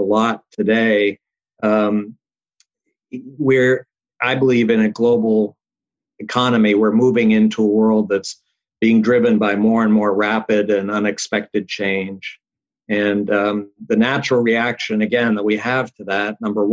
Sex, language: male, English